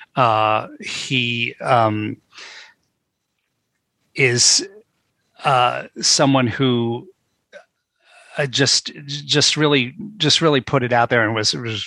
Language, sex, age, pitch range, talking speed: English, male, 40-59, 110-135 Hz, 100 wpm